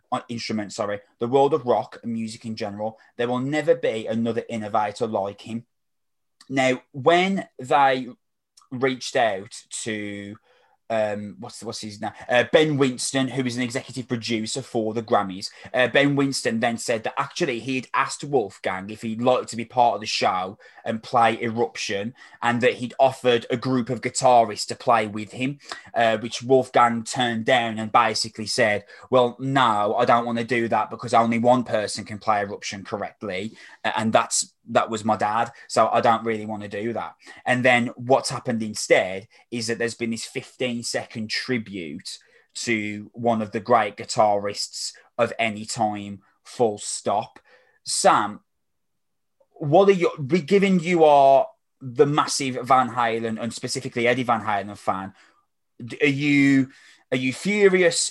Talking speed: 165 wpm